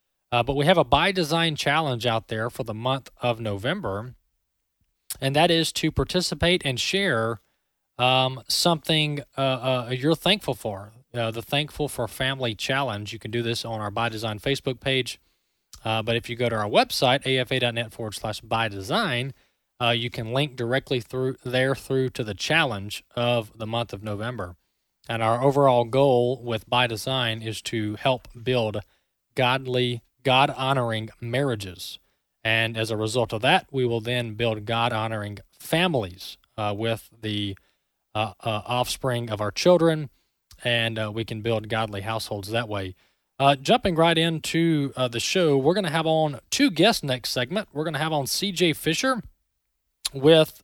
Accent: American